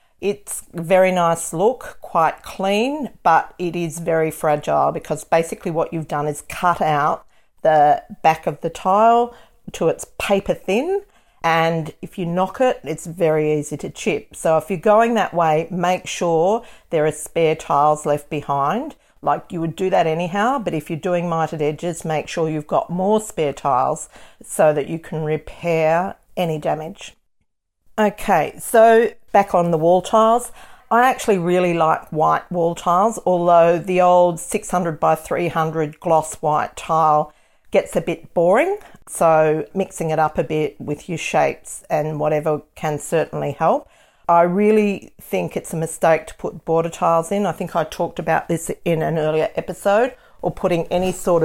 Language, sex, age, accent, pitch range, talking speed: English, female, 50-69, Australian, 160-190 Hz, 170 wpm